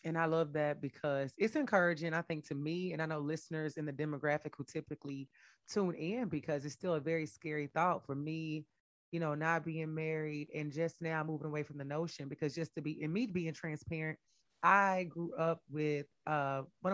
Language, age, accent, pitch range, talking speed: English, 30-49, American, 155-195 Hz, 205 wpm